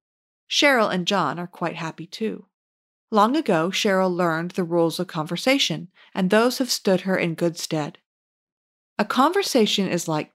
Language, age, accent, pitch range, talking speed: English, 40-59, American, 170-215 Hz, 155 wpm